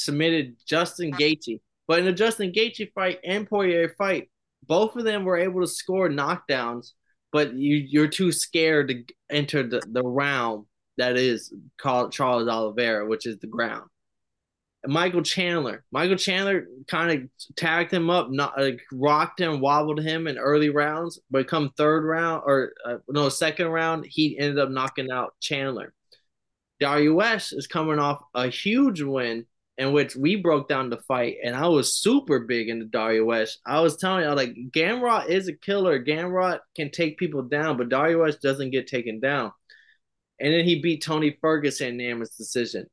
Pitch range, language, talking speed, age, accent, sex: 130-170 Hz, English, 175 wpm, 20-39, American, male